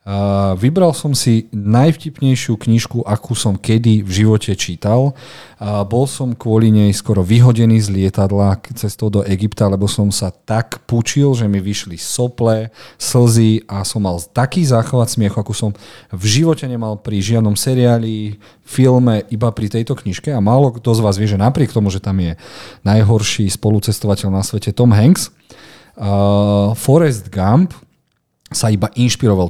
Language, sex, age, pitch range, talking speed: Slovak, male, 40-59, 100-125 Hz, 155 wpm